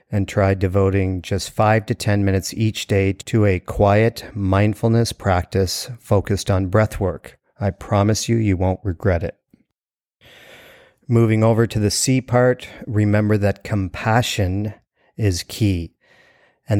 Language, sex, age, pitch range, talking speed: English, male, 40-59, 95-115 Hz, 135 wpm